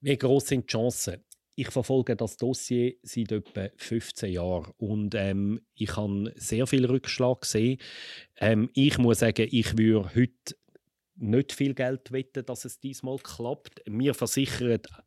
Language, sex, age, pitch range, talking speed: German, male, 30-49, 105-140 Hz, 150 wpm